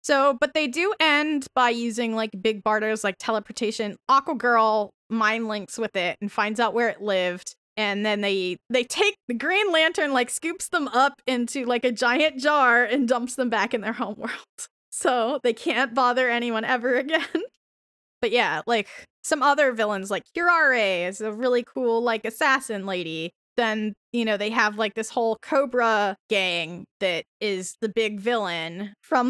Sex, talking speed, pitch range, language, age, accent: female, 175 wpm, 205-260 Hz, English, 10-29, American